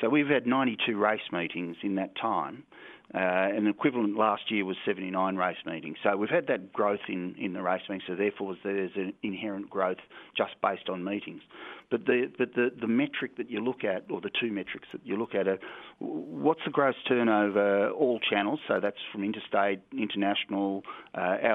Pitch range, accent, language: 95-120 Hz, Australian, English